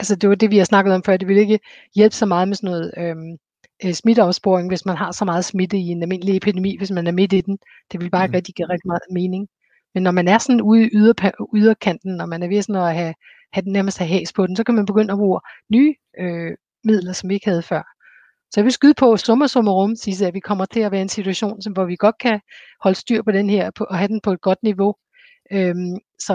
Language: Danish